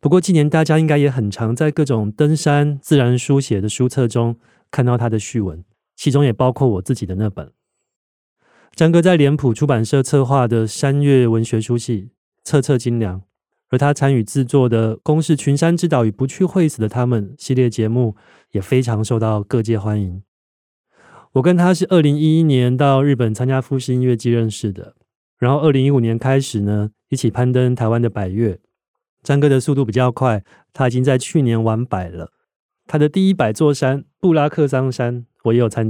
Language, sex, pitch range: Chinese, male, 115-145 Hz